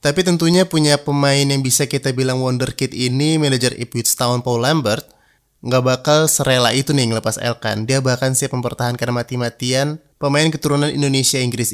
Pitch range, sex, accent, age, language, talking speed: 125-145 Hz, male, native, 20-39, Indonesian, 155 wpm